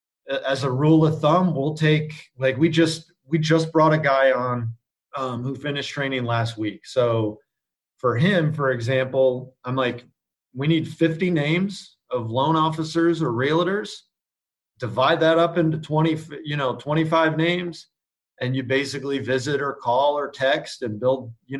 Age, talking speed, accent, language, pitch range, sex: 40-59, 160 wpm, American, English, 125-160 Hz, male